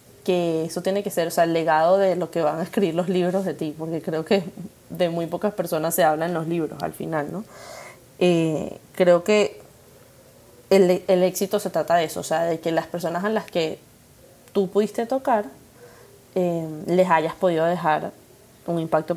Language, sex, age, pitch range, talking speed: Spanish, female, 20-39, 165-195 Hz, 195 wpm